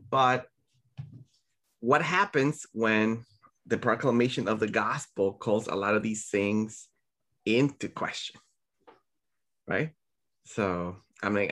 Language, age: English, 20-39